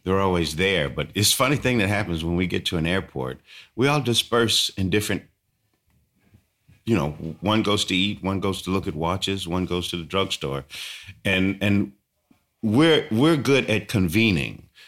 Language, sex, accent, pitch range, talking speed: English, male, American, 75-105 Hz, 180 wpm